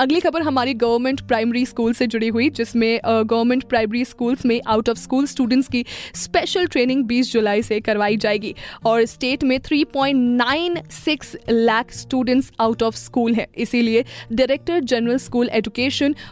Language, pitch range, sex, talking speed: Hindi, 225-265 Hz, female, 155 wpm